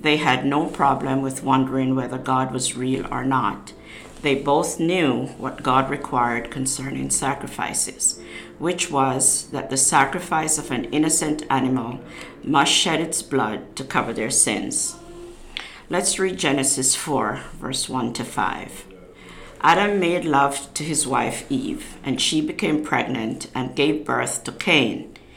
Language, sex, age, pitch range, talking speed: English, female, 50-69, 130-155 Hz, 145 wpm